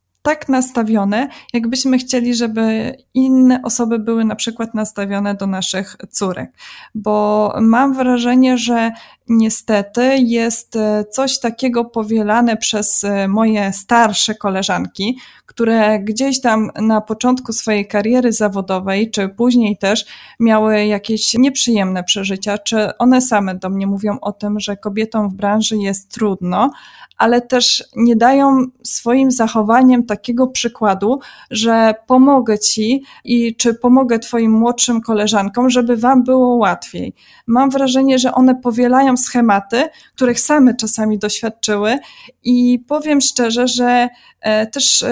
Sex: female